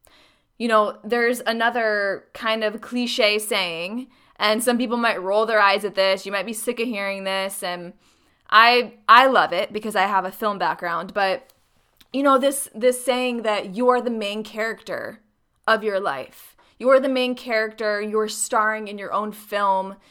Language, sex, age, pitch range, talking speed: English, female, 20-39, 195-240 Hz, 180 wpm